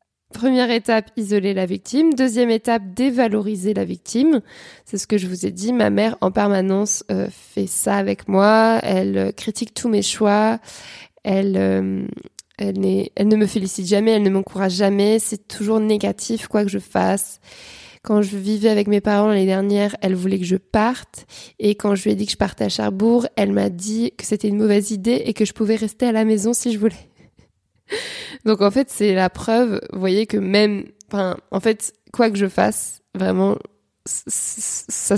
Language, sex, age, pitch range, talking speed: French, female, 20-39, 190-225 Hz, 195 wpm